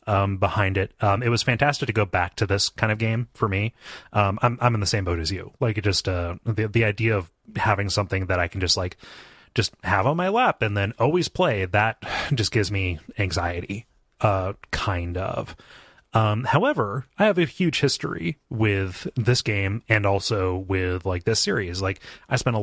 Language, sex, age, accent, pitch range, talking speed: English, male, 30-49, American, 95-115 Hz, 205 wpm